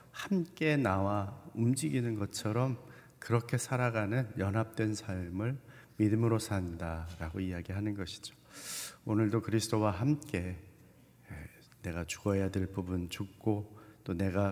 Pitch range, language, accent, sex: 100-125 Hz, Korean, native, male